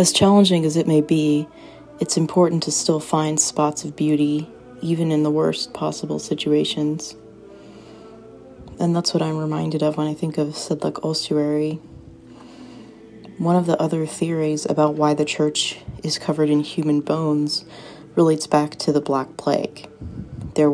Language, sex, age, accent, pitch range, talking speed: English, female, 30-49, American, 145-160 Hz, 155 wpm